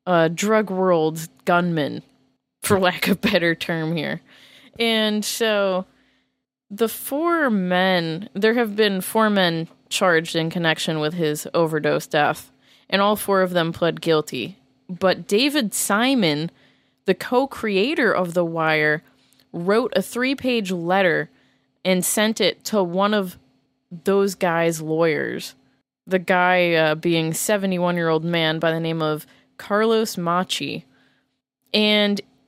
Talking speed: 130 wpm